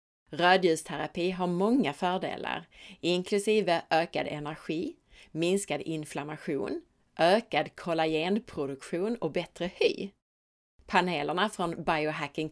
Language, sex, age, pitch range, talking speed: Swedish, female, 30-49, 150-205 Hz, 80 wpm